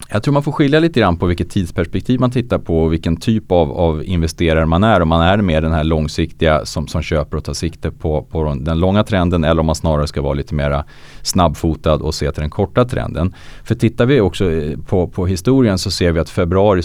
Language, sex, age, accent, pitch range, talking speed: Swedish, male, 30-49, Norwegian, 75-100 Hz, 235 wpm